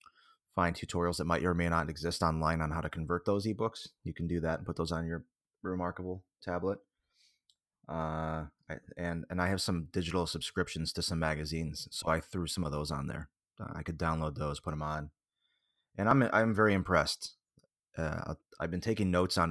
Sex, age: male, 30-49